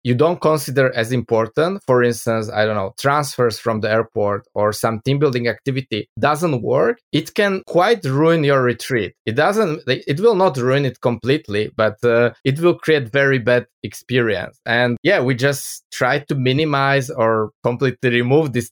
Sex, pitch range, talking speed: male, 120-150 Hz, 175 wpm